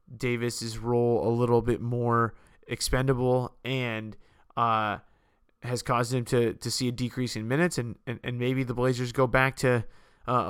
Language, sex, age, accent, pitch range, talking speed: English, male, 20-39, American, 120-135 Hz, 165 wpm